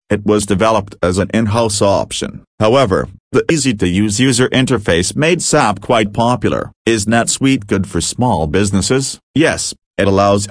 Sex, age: male, 40-59